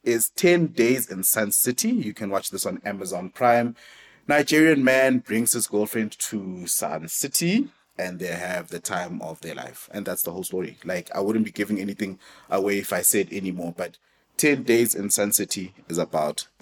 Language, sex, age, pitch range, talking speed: English, male, 30-49, 95-125 Hz, 190 wpm